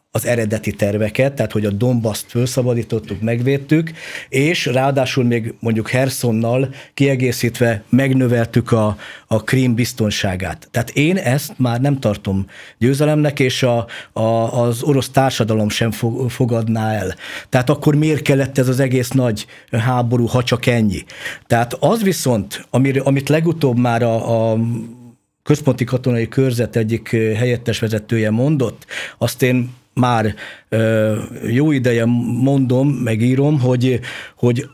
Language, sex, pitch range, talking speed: Hungarian, male, 115-135 Hz, 130 wpm